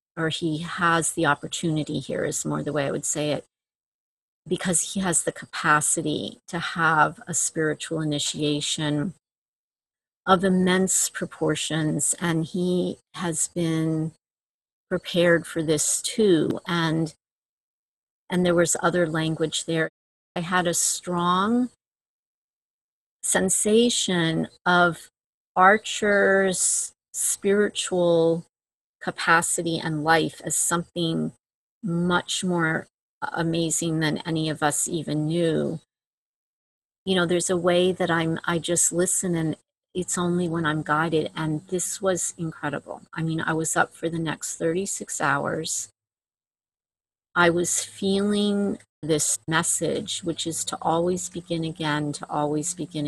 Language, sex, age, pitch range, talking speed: English, female, 40-59, 155-180 Hz, 120 wpm